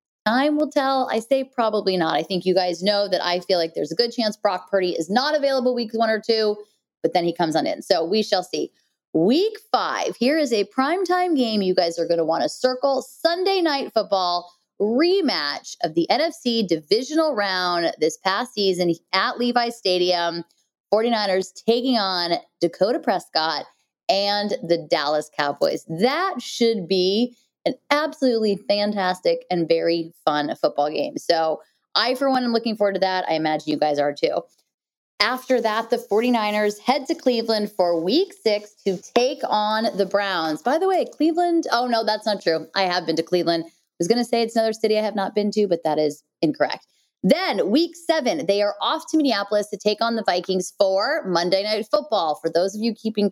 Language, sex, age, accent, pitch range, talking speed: English, female, 20-39, American, 180-245 Hz, 195 wpm